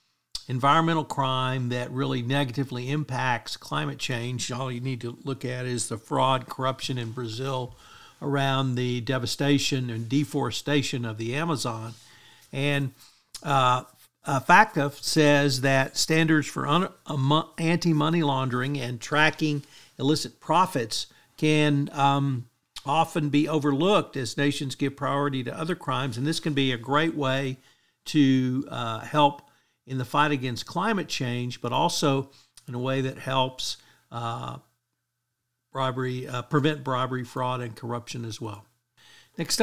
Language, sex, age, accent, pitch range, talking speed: English, male, 50-69, American, 125-155 Hz, 130 wpm